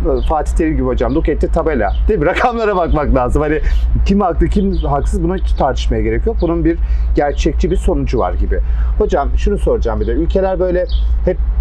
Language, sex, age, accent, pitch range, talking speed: Turkish, male, 40-59, native, 120-165 Hz, 180 wpm